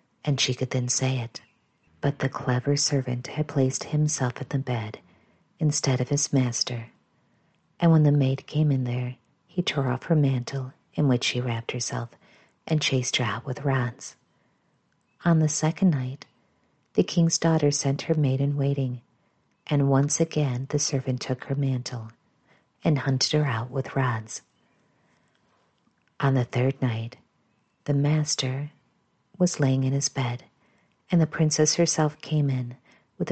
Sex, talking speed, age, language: female, 155 wpm, 50-69, English